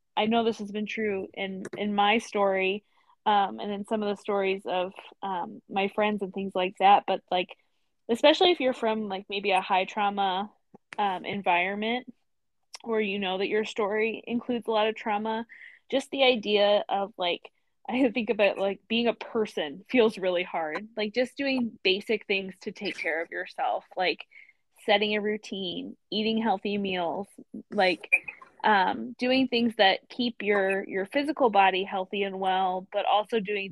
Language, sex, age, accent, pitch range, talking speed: English, female, 20-39, American, 190-220 Hz, 175 wpm